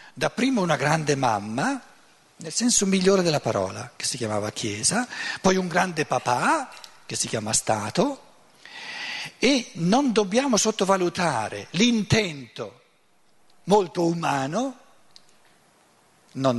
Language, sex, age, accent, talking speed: Italian, male, 60-79, native, 105 wpm